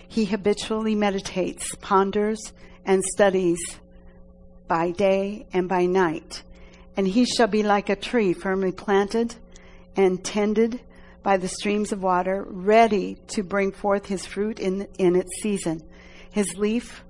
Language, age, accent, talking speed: English, 60-79, American, 135 wpm